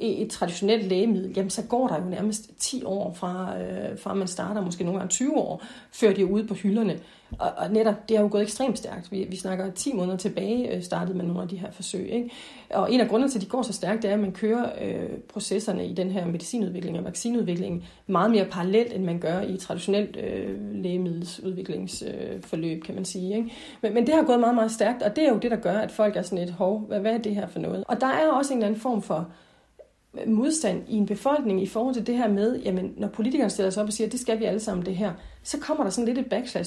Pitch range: 190-235 Hz